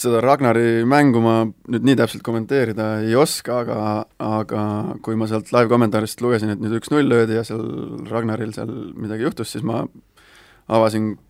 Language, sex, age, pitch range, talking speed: English, male, 20-39, 110-120 Hz, 165 wpm